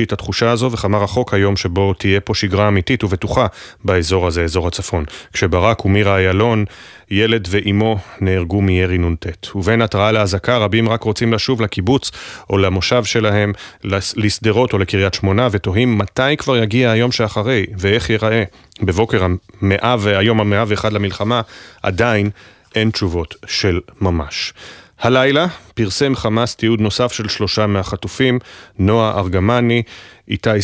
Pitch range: 95-115 Hz